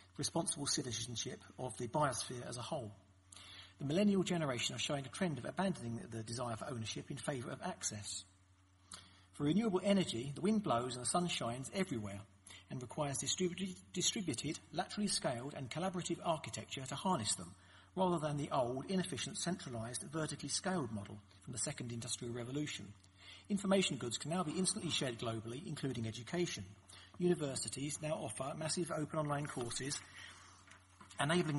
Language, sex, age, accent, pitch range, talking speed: English, male, 40-59, British, 105-160 Hz, 150 wpm